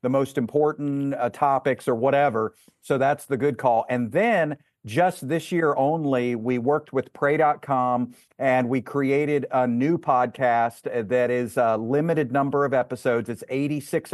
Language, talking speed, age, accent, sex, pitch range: English, 155 wpm, 50-69, American, male, 130-155 Hz